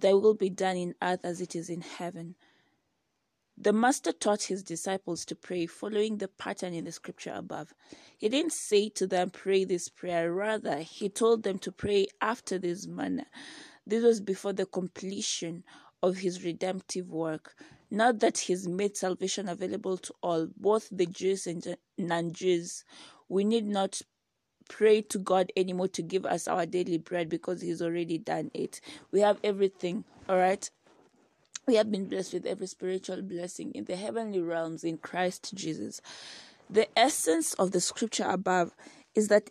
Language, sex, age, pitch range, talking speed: English, female, 20-39, 180-210 Hz, 170 wpm